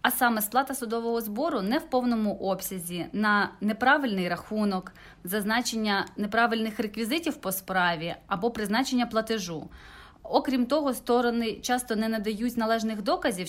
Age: 30-49